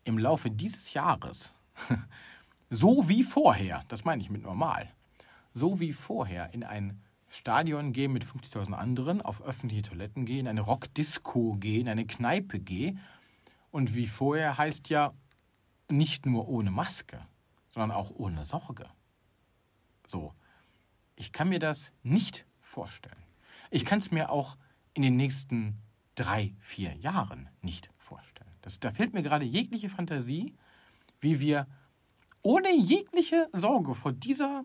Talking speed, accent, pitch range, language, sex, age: 135 wpm, German, 115-185 Hz, German, male, 40-59